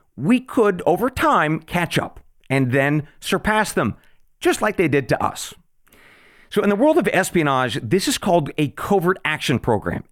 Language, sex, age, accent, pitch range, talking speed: English, male, 40-59, American, 130-190 Hz, 170 wpm